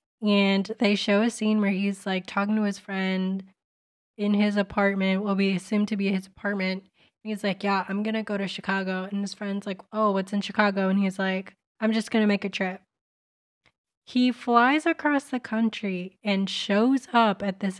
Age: 20-39